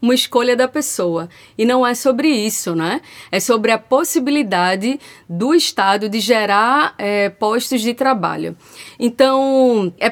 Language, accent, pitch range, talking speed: Portuguese, Brazilian, 220-270 Hz, 135 wpm